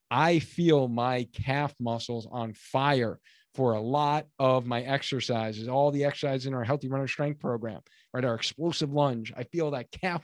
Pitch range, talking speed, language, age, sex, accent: 120-150 Hz, 175 wpm, English, 40-59, male, American